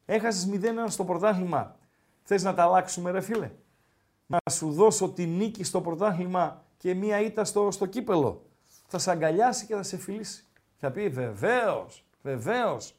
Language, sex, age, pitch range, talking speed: Greek, male, 50-69, 170-215 Hz, 155 wpm